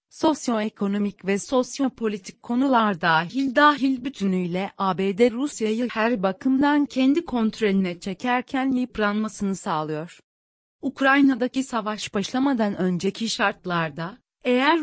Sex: female